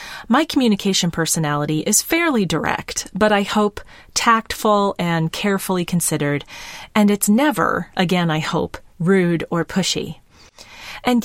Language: English